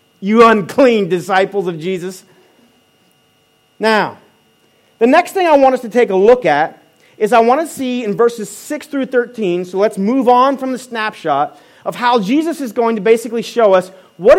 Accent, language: American, English